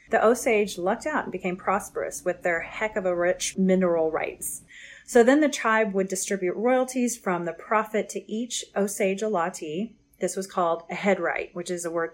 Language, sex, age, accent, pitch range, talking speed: English, female, 30-49, American, 180-215 Hz, 195 wpm